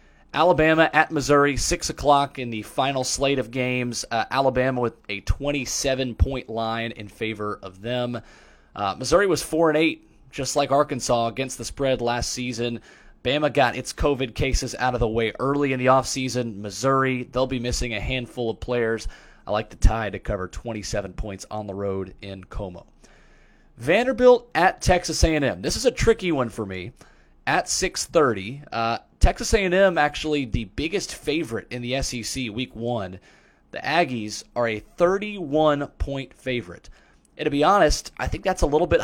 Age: 30-49